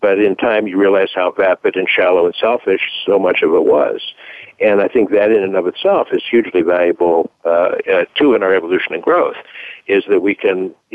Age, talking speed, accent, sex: 60-79, 220 wpm, American, male